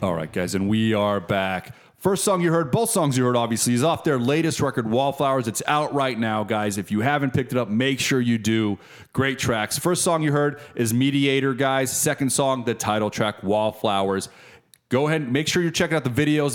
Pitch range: 105-135 Hz